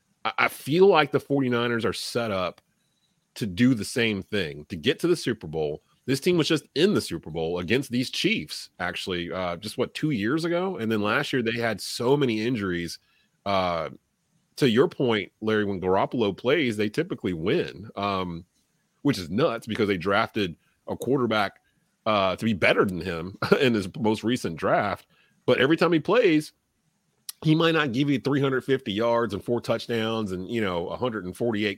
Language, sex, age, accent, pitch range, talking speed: English, male, 30-49, American, 105-140 Hz, 180 wpm